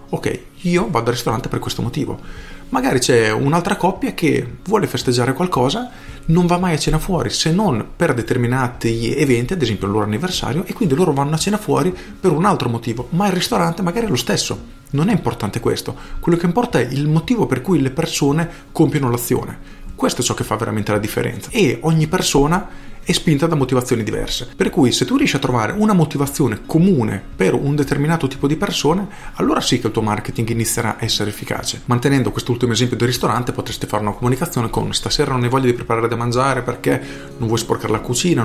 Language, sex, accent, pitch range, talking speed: Italian, male, native, 115-160 Hz, 205 wpm